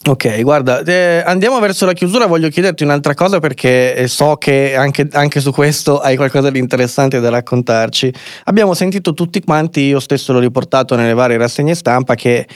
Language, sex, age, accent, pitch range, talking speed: Italian, male, 20-39, native, 120-145 Hz, 175 wpm